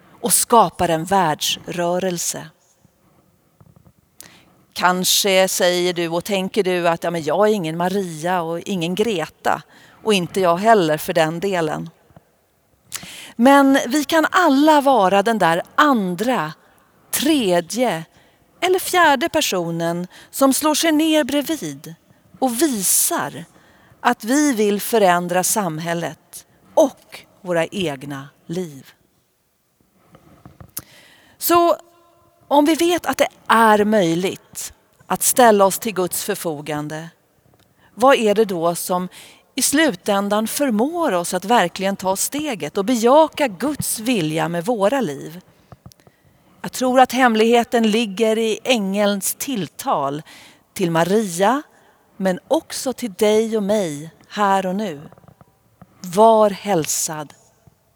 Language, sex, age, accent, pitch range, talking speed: Swedish, female, 40-59, native, 170-250 Hz, 115 wpm